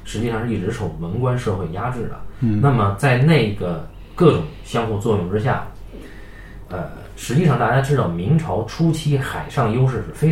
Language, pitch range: Chinese, 100-135 Hz